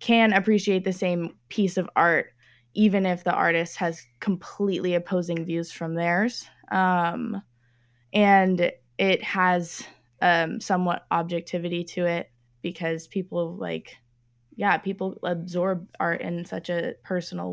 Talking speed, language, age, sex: 125 wpm, English, 10-29, female